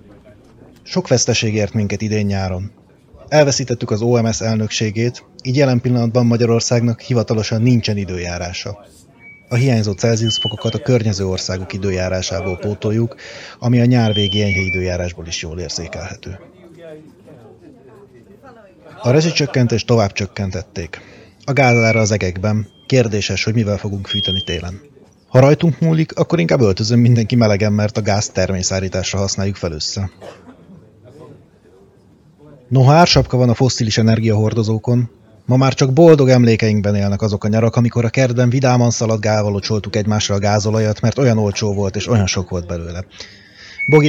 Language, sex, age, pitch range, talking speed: Hungarian, male, 30-49, 100-125 Hz, 130 wpm